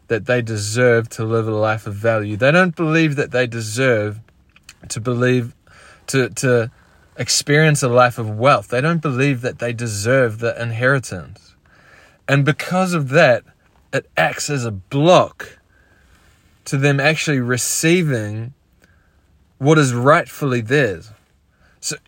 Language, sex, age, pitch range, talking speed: English, male, 20-39, 110-140 Hz, 135 wpm